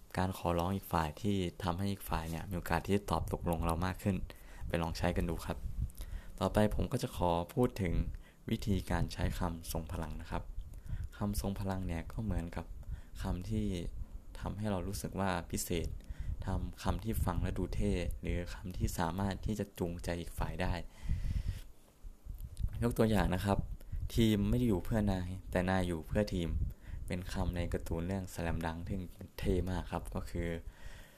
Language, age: Thai, 20-39